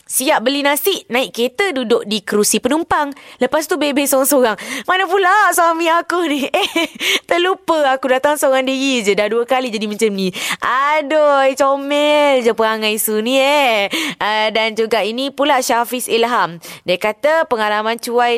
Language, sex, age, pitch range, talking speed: Malay, female, 20-39, 195-280 Hz, 160 wpm